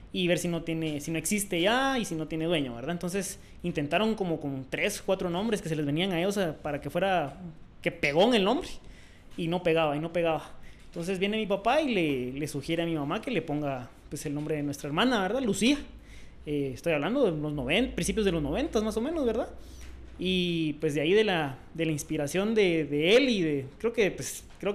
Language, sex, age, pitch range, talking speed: Spanish, male, 20-39, 155-195 Hz, 235 wpm